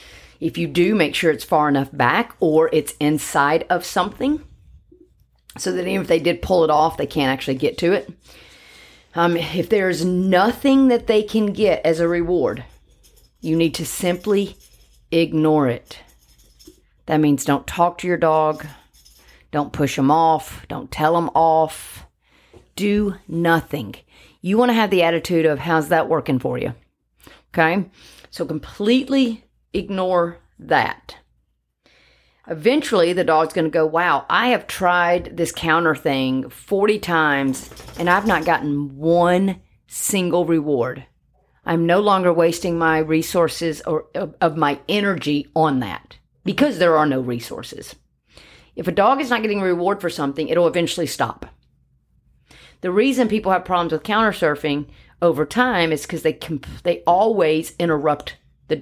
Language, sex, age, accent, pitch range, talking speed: English, female, 40-59, American, 155-185 Hz, 150 wpm